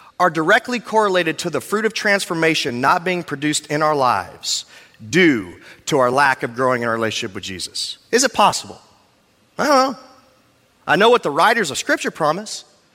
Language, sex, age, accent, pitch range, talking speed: English, male, 30-49, American, 170-265 Hz, 180 wpm